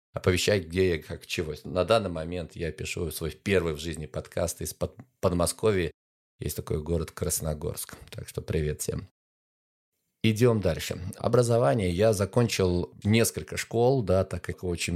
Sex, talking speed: male, 145 wpm